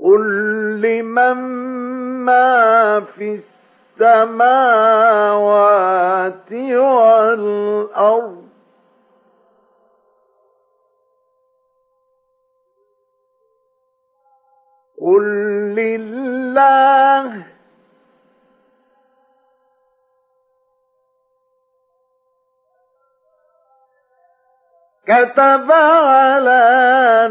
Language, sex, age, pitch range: Arabic, male, 50-69, 215-275 Hz